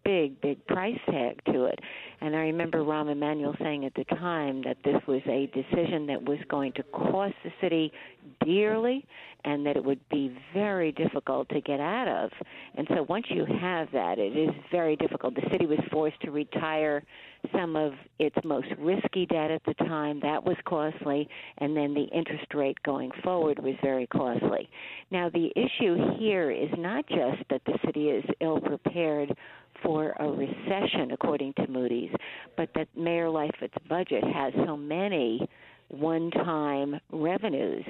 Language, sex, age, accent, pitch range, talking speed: English, female, 50-69, American, 145-165 Hz, 165 wpm